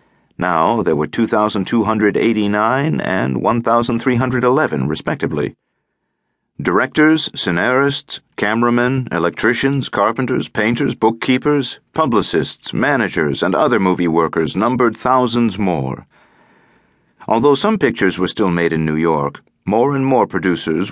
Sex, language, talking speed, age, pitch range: male, English, 105 wpm, 50-69, 95-140 Hz